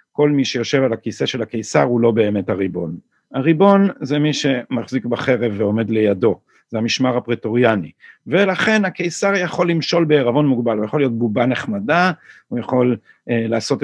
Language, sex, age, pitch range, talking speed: Hebrew, male, 50-69, 115-145 Hz, 155 wpm